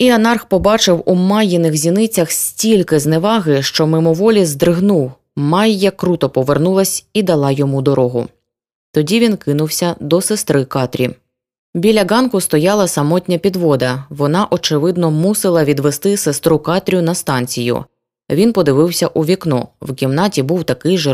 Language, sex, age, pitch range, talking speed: Ukrainian, female, 20-39, 140-190 Hz, 130 wpm